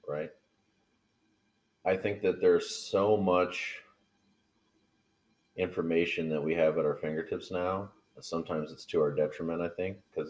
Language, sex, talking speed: English, male, 140 wpm